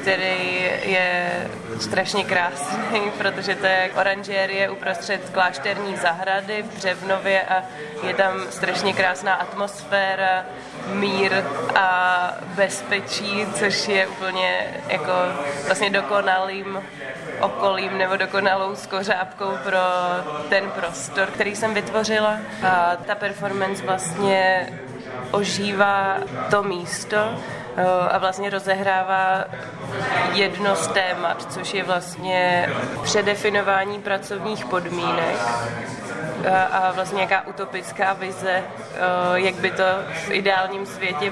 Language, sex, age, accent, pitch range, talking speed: Czech, female, 20-39, native, 185-200 Hz, 95 wpm